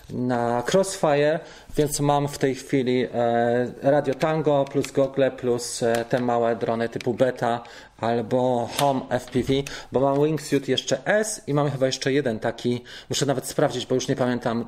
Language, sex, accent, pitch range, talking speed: Polish, male, native, 120-155 Hz, 155 wpm